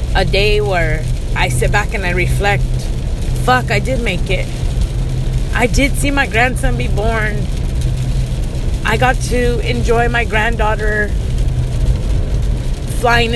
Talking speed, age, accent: 125 wpm, 30-49, American